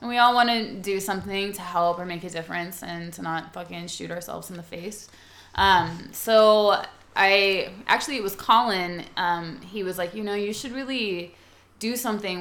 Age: 20-39